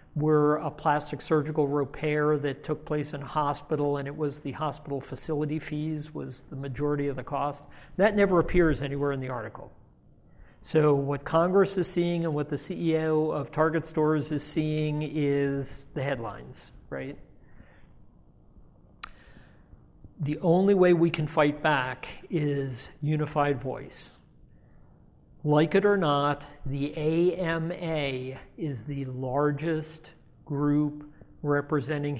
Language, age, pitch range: English, 50-69, 140-155 Hz